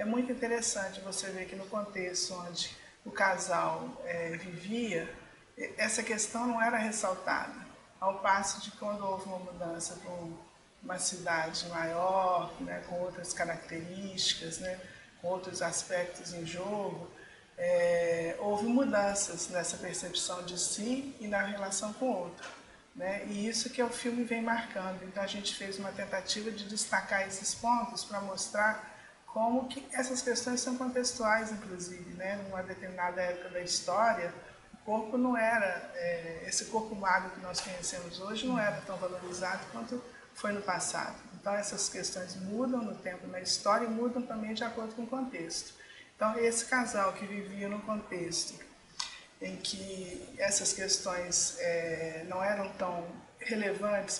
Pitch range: 180-220 Hz